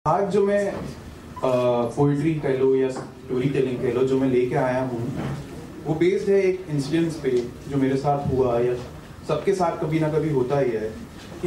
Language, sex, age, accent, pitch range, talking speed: Hindi, male, 30-49, native, 125-170 Hz, 185 wpm